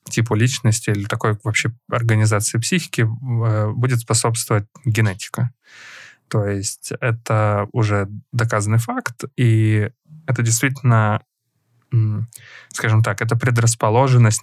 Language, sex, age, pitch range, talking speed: Ukrainian, male, 20-39, 105-125 Hz, 100 wpm